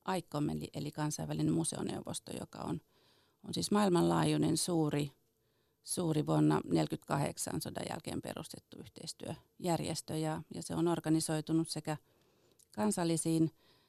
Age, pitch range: 40-59, 150-165 Hz